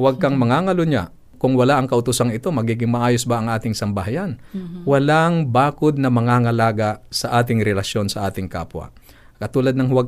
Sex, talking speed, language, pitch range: male, 165 wpm, Filipino, 105-130 Hz